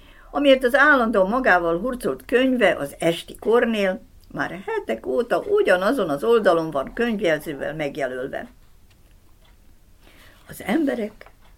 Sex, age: female, 60-79